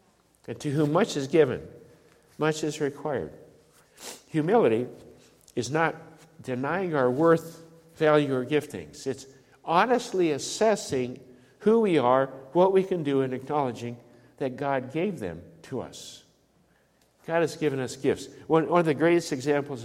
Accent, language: American, English